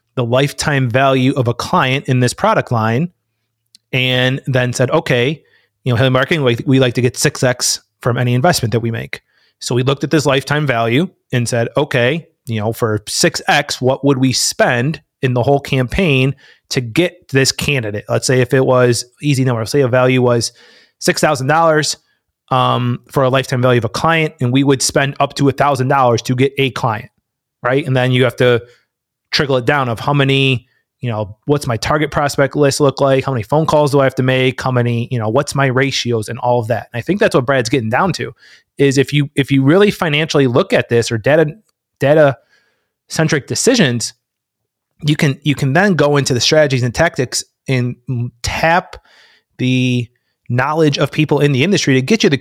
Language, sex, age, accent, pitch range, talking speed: English, male, 30-49, American, 125-145 Hz, 200 wpm